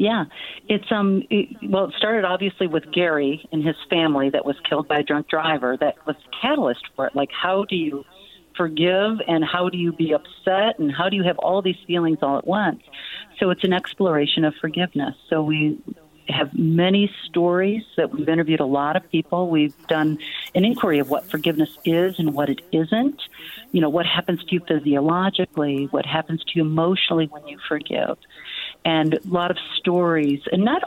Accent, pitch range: American, 160-200 Hz